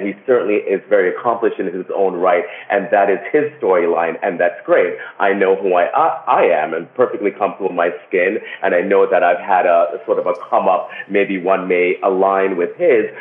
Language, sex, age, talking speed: English, male, 30-49, 210 wpm